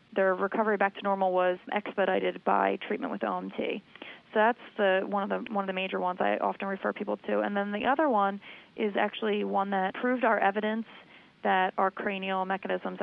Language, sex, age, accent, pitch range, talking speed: English, female, 20-39, American, 185-215 Hz, 200 wpm